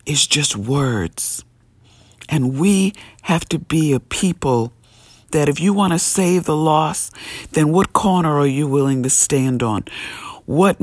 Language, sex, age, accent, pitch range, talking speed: English, female, 50-69, American, 130-165 Hz, 155 wpm